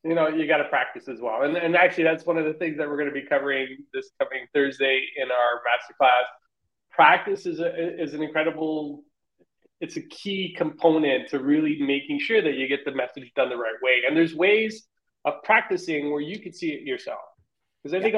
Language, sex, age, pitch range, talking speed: English, male, 20-39, 135-175 Hz, 220 wpm